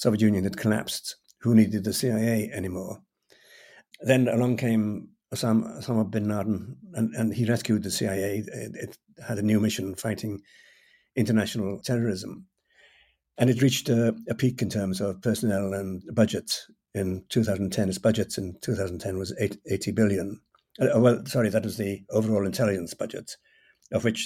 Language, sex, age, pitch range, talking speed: English, male, 60-79, 100-115 Hz, 150 wpm